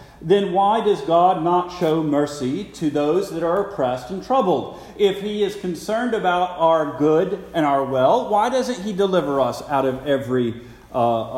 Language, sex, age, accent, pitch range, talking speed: English, male, 50-69, American, 110-160 Hz, 175 wpm